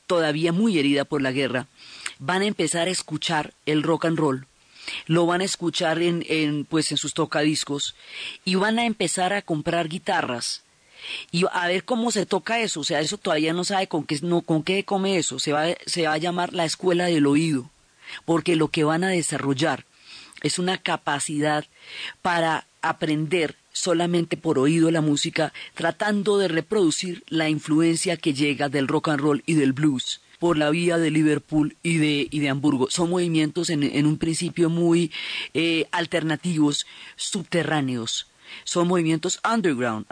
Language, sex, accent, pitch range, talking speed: Spanish, female, Colombian, 145-175 Hz, 170 wpm